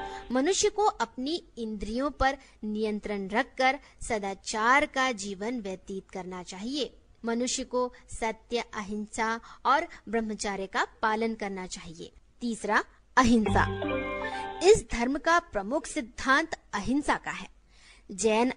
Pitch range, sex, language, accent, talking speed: 210-270 Hz, female, Hindi, native, 110 wpm